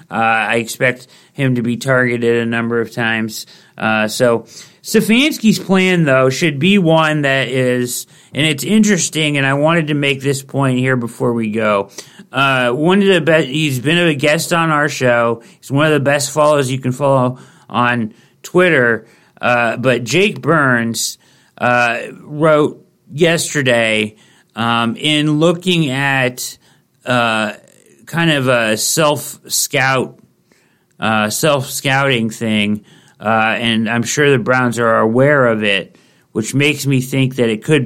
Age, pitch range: 40-59, 120-155 Hz